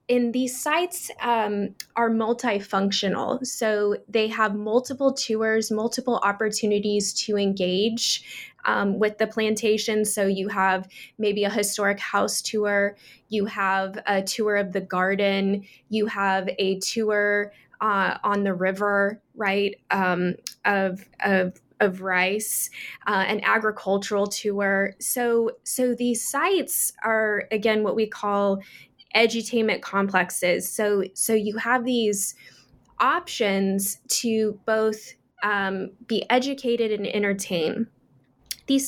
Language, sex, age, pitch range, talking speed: English, female, 10-29, 200-230 Hz, 120 wpm